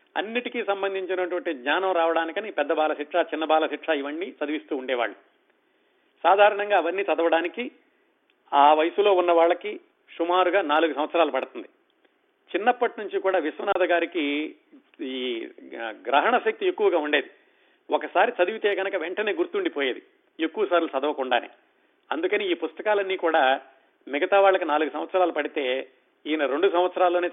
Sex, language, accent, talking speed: male, Telugu, native, 115 wpm